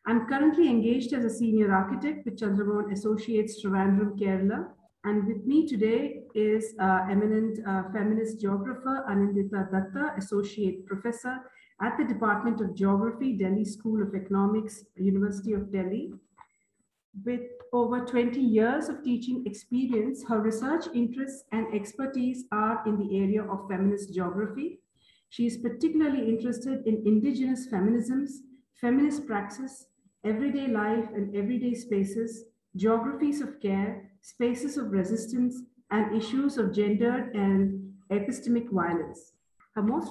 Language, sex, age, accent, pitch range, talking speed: English, female, 50-69, Indian, 205-245 Hz, 130 wpm